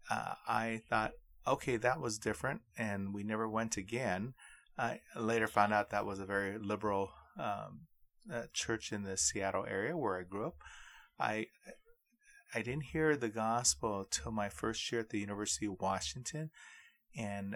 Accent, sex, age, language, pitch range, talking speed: American, male, 30-49, English, 100-115 Hz, 165 wpm